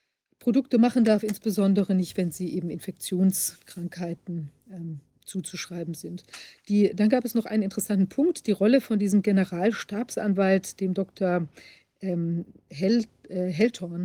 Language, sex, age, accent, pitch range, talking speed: German, female, 50-69, German, 180-215 Hz, 130 wpm